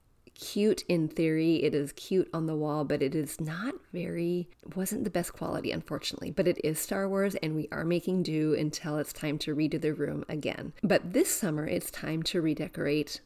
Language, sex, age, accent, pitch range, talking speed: English, female, 30-49, American, 160-205 Hz, 200 wpm